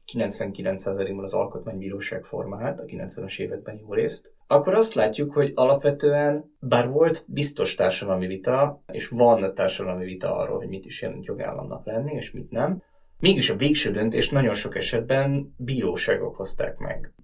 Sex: male